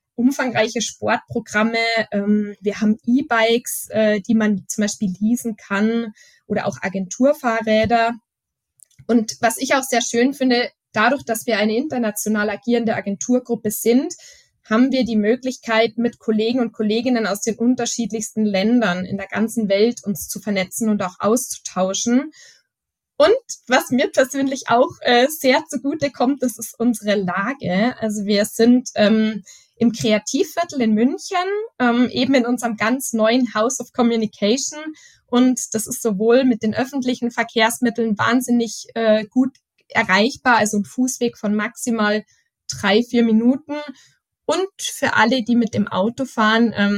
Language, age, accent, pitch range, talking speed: German, 20-39, German, 210-250 Hz, 135 wpm